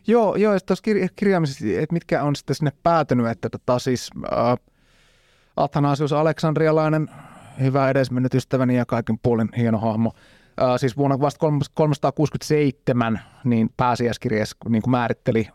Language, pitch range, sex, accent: Finnish, 110-135 Hz, male, native